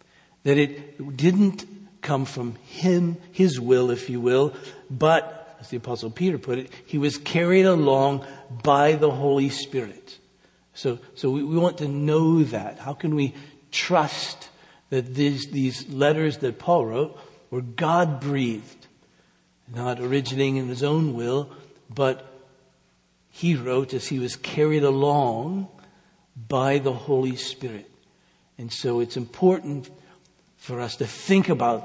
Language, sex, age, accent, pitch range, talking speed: English, male, 60-79, American, 130-165 Hz, 140 wpm